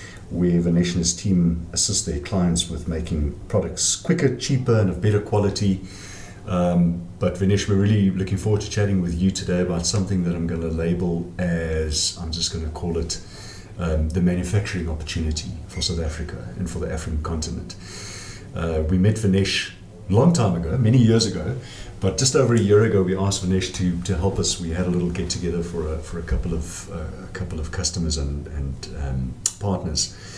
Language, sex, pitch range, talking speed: English, male, 85-95 Hz, 190 wpm